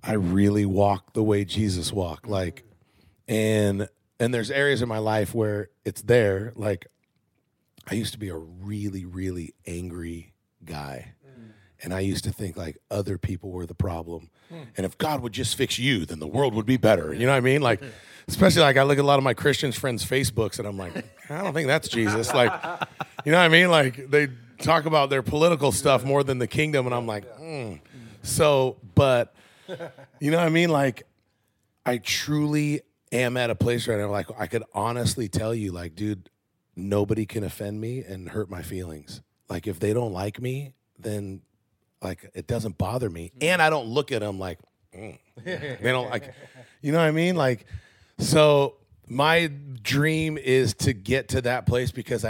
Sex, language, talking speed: male, English, 195 wpm